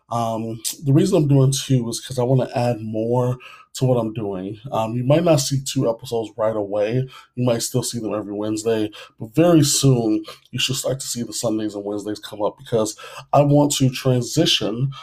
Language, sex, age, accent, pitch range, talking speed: English, male, 20-39, American, 110-135 Hz, 210 wpm